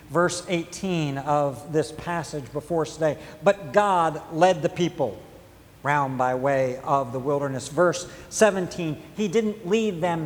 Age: 50-69